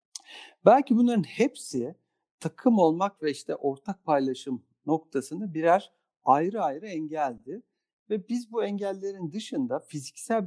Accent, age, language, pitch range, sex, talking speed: native, 50-69, Turkish, 140-200 Hz, male, 115 wpm